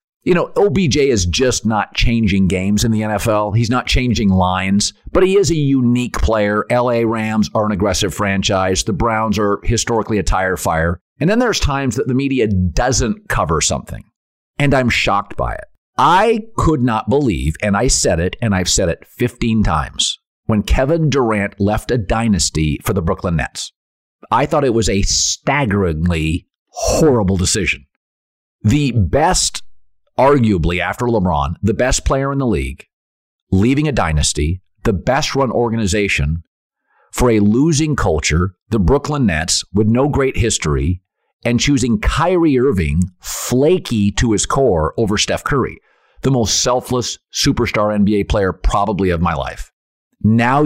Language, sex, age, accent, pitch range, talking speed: English, male, 50-69, American, 90-125 Hz, 155 wpm